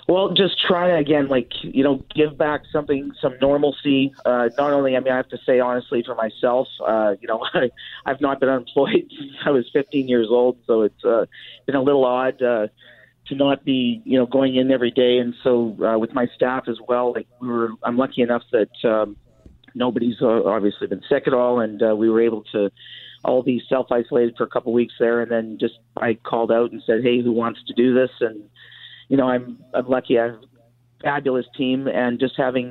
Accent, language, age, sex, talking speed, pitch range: American, English, 40-59, male, 220 wpm, 120-135 Hz